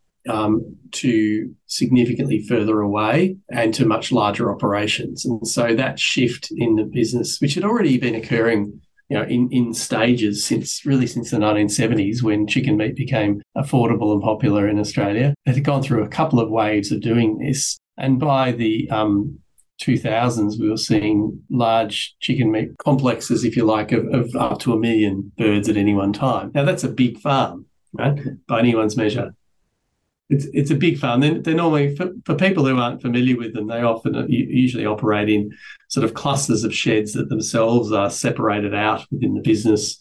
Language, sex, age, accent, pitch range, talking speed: English, male, 40-59, Australian, 105-130 Hz, 180 wpm